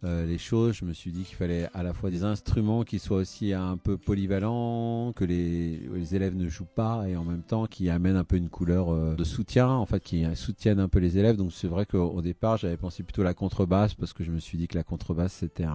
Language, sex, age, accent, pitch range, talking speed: English, male, 40-59, French, 85-100 Hz, 265 wpm